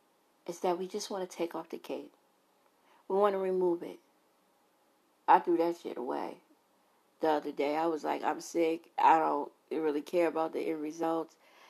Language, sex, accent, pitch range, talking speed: English, female, American, 160-185 Hz, 185 wpm